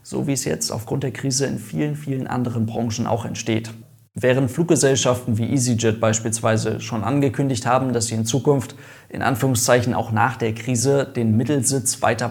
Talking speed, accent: 170 wpm, German